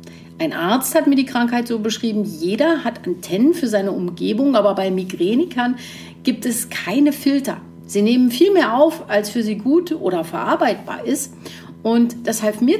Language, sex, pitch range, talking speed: German, female, 175-255 Hz, 175 wpm